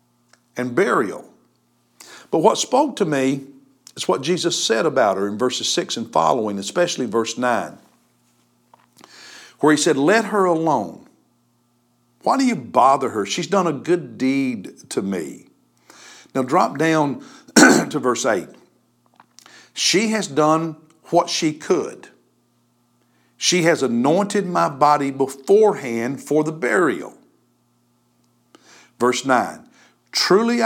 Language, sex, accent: English, male, American